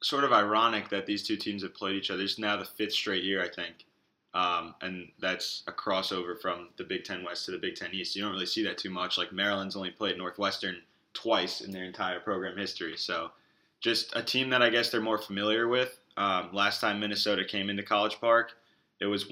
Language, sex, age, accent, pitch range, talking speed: English, male, 20-39, American, 95-110 Hz, 225 wpm